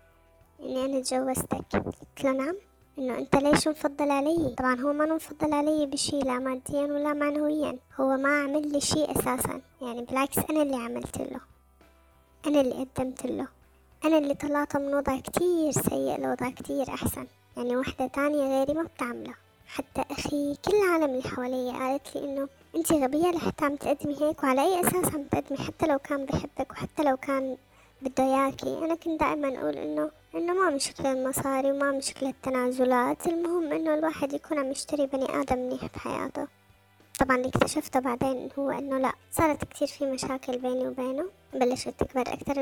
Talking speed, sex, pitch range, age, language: 170 wpm, male, 260-295 Hz, 20-39, Arabic